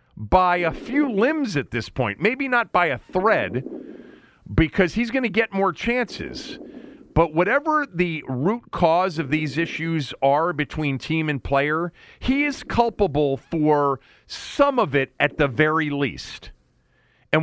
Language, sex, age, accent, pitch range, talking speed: English, male, 40-59, American, 130-210 Hz, 150 wpm